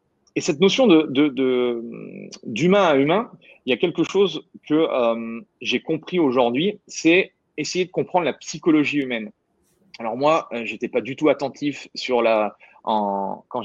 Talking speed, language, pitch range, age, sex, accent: 165 wpm, French, 125-165 Hz, 30-49, male, French